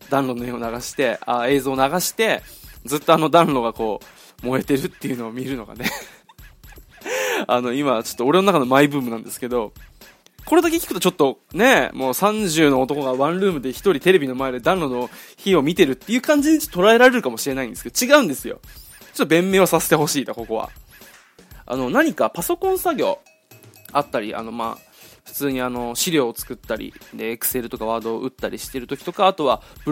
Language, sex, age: Japanese, male, 20-39